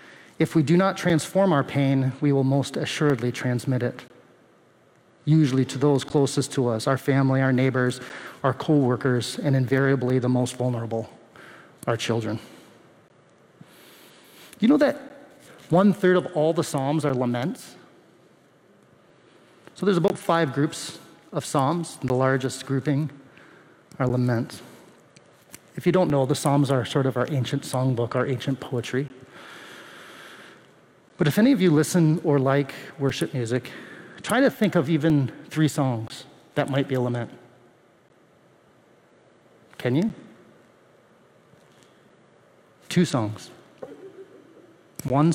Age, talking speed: 30-49, 130 wpm